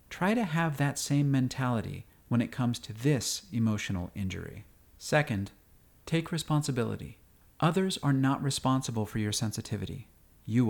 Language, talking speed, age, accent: English, 135 wpm, 40-59, American